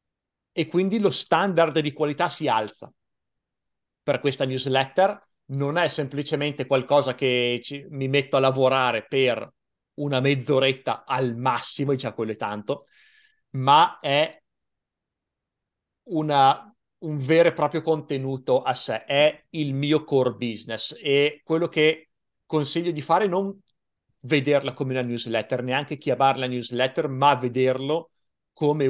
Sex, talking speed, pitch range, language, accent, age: male, 130 wpm, 130-155 Hz, Italian, native, 30-49